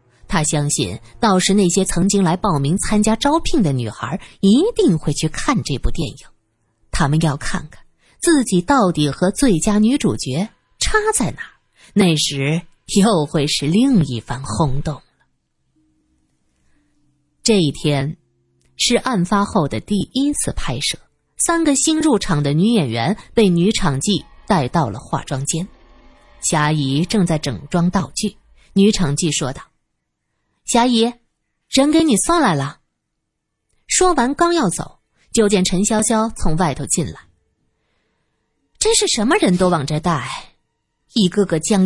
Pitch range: 145-225 Hz